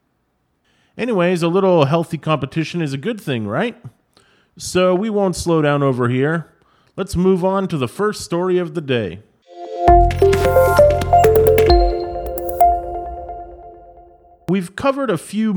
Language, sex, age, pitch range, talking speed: English, male, 30-49, 130-195 Hz, 120 wpm